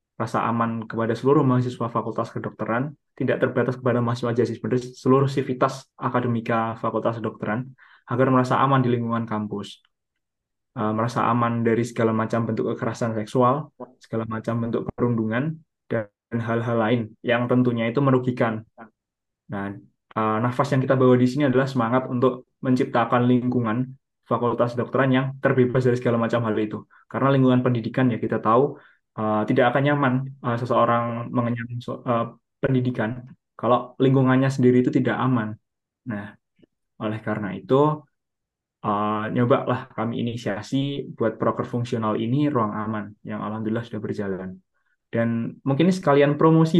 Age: 20-39